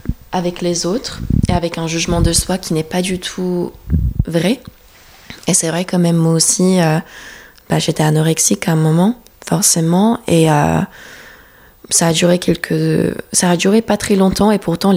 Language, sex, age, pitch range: French, female, 20-39, 165-185 Hz